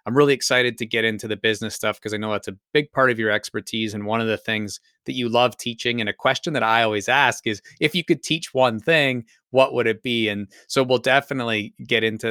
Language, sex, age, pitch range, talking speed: English, male, 30-49, 110-130 Hz, 255 wpm